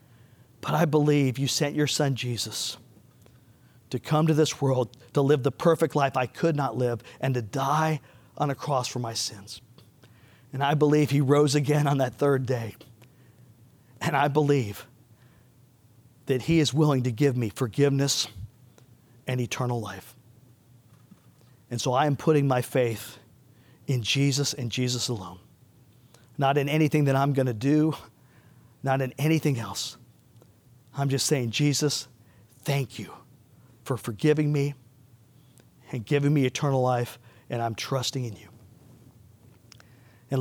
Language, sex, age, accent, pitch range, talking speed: English, male, 40-59, American, 120-140 Hz, 145 wpm